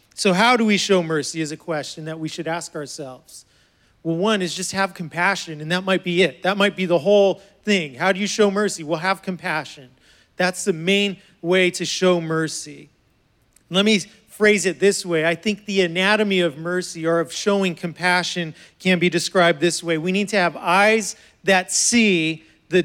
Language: English